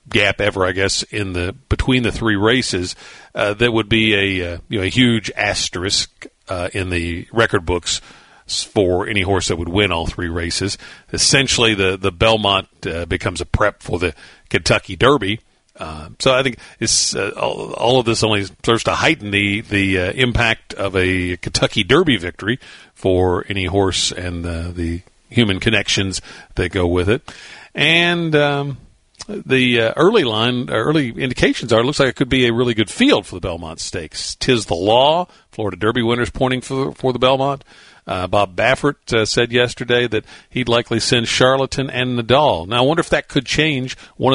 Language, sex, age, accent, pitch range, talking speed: English, male, 50-69, American, 95-125 Hz, 185 wpm